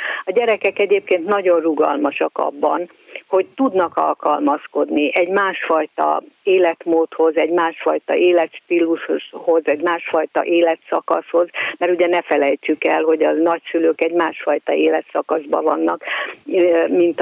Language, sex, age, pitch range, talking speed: Hungarian, female, 50-69, 165-195 Hz, 110 wpm